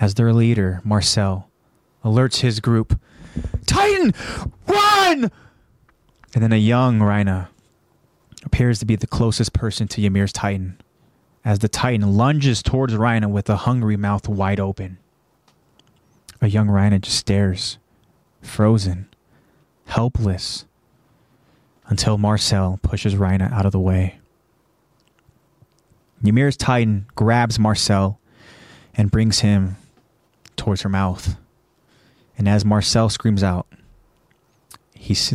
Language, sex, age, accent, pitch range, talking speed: English, male, 20-39, American, 100-115 Hz, 110 wpm